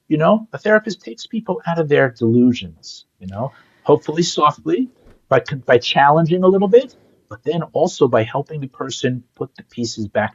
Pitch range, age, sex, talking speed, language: 135-215 Hz, 50-69, male, 180 wpm, English